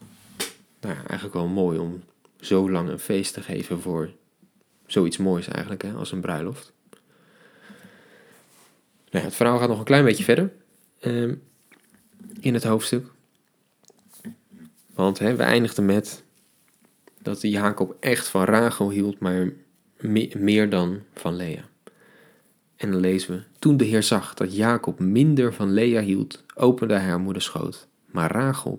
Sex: male